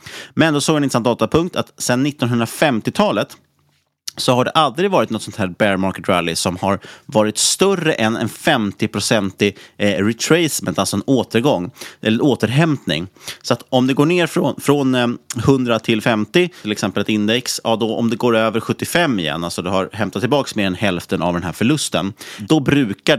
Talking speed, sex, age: 185 wpm, male, 30-49